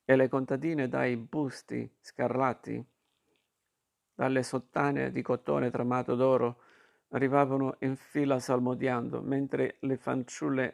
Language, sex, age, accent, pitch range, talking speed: Italian, male, 50-69, native, 120-130 Hz, 105 wpm